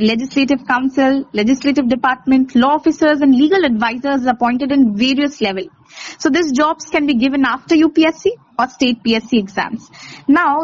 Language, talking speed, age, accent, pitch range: English, 145 wpm, 20-39, Indian, 230-285 Hz